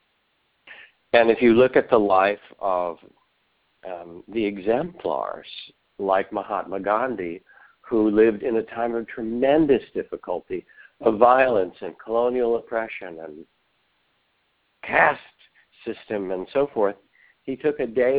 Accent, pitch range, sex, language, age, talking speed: American, 105-140 Hz, male, English, 60-79, 120 wpm